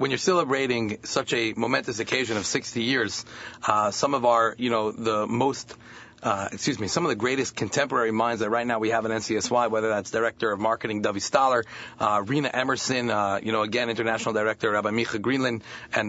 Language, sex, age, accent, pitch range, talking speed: English, male, 30-49, American, 110-130 Hz, 200 wpm